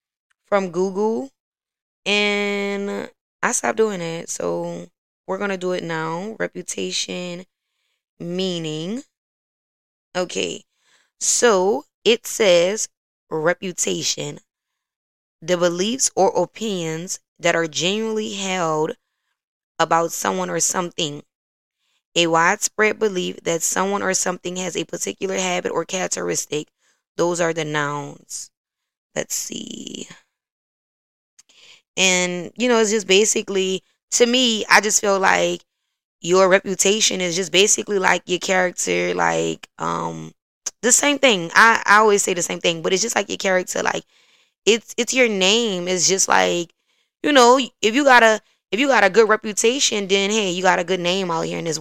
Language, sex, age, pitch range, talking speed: English, female, 10-29, 165-210 Hz, 140 wpm